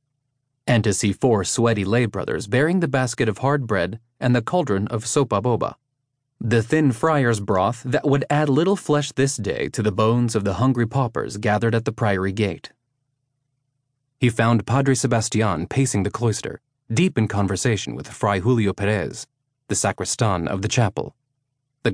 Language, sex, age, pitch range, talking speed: English, male, 30-49, 105-135 Hz, 165 wpm